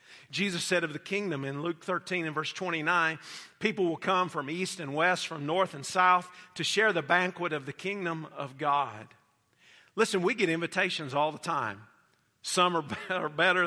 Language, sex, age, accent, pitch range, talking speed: English, male, 50-69, American, 175-230 Hz, 185 wpm